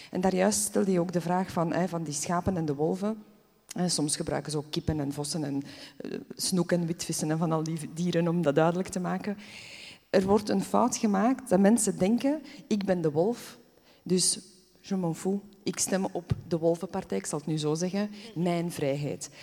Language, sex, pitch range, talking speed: Dutch, female, 165-200 Hz, 200 wpm